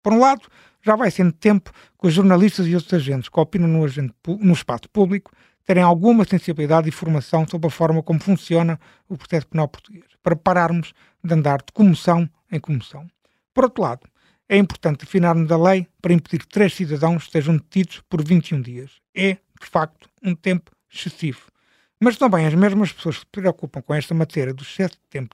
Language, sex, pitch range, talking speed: Portuguese, male, 160-195 Hz, 195 wpm